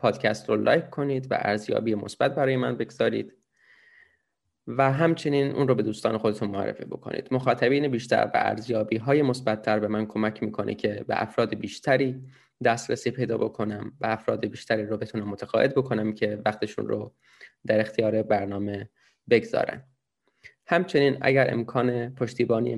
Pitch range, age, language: 110-135 Hz, 20-39, Persian